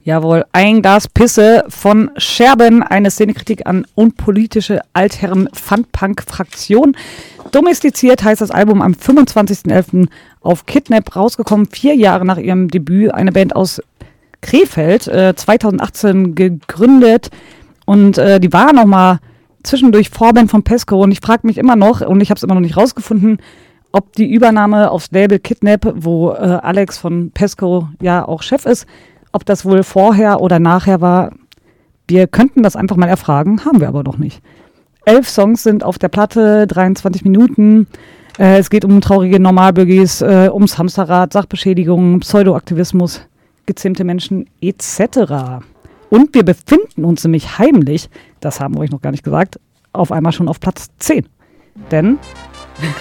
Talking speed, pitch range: 145 wpm, 180-215 Hz